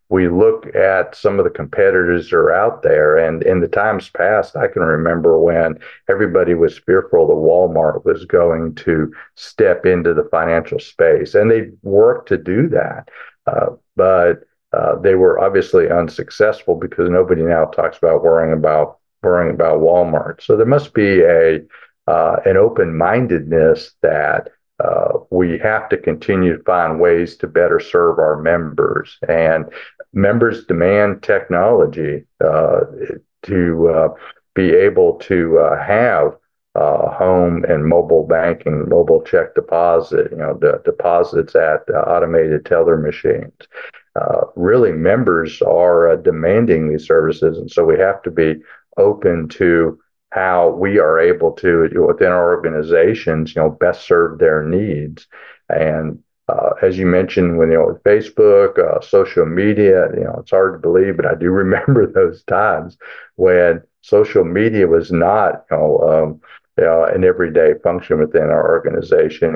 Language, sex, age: English, male, 50-69